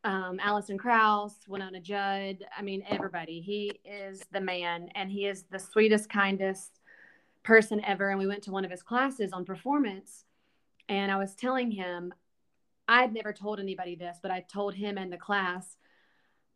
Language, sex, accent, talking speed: English, female, American, 170 wpm